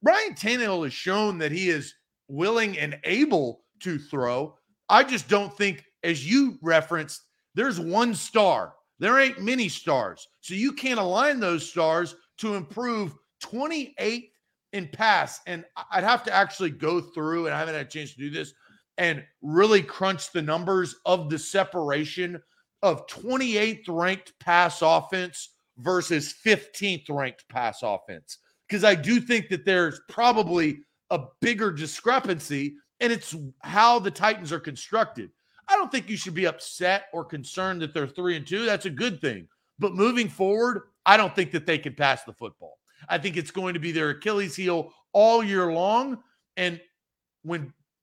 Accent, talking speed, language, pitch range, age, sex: American, 165 wpm, English, 160-220 Hz, 40-59, male